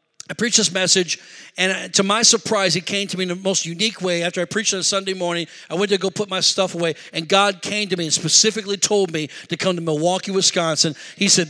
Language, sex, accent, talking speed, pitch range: English, male, American, 250 wpm, 190-230 Hz